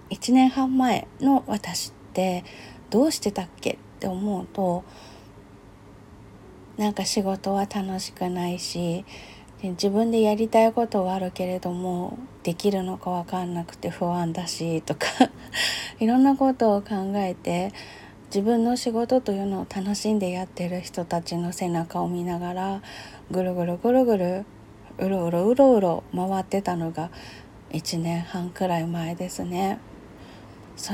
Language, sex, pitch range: Japanese, female, 170-225 Hz